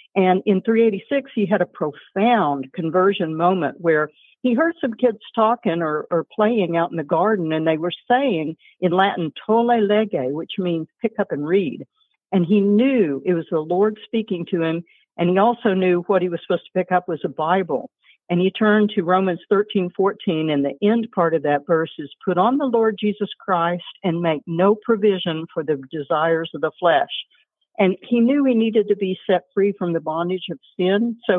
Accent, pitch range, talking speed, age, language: American, 170-215 Hz, 205 wpm, 60-79, English